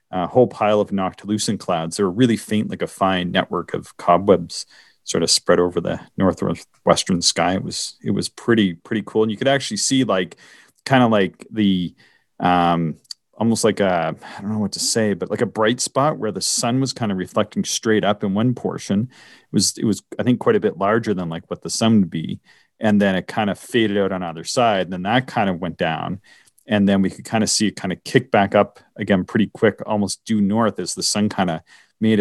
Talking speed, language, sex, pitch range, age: 235 wpm, English, male, 90-110 Hz, 40-59